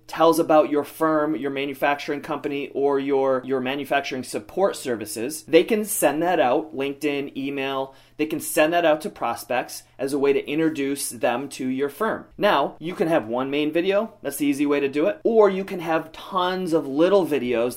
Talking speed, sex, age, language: 195 wpm, male, 30-49, English